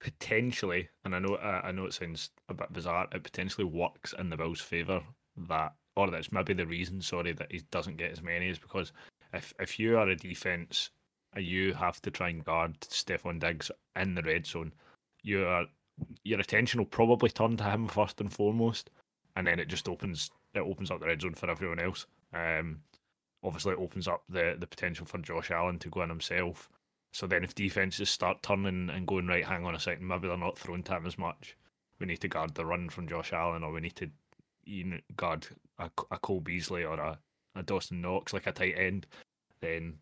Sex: male